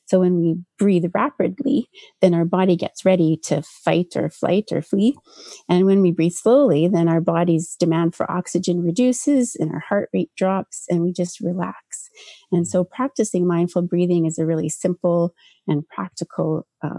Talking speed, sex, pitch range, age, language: 175 wpm, female, 170-210 Hz, 30-49, English